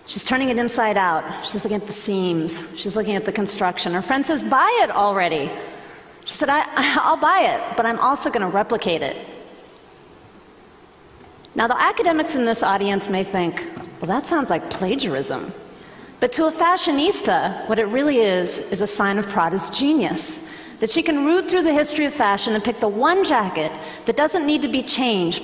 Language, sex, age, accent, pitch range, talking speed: English, female, 40-59, American, 200-300 Hz, 190 wpm